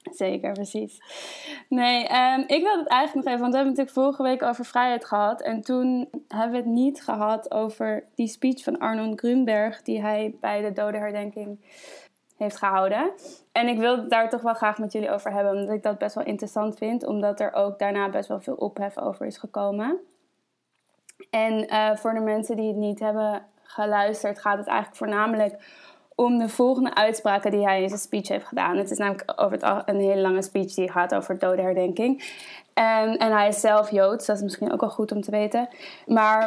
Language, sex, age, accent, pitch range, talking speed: Dutch, female, 20-39, Dutch, 210-250 Hz, 205 wpm